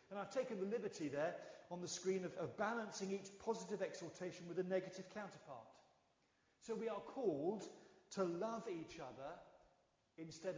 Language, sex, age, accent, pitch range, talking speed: English, male, 40-59, British, 150-195 Hz, 160 wpm